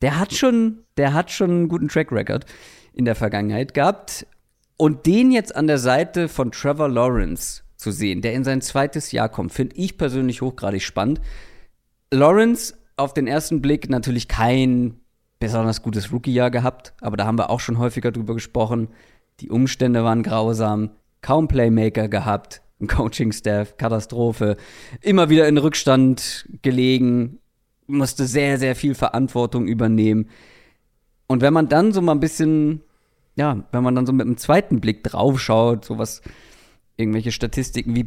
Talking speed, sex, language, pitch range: 155 wpm, male, German, 110-140 Hz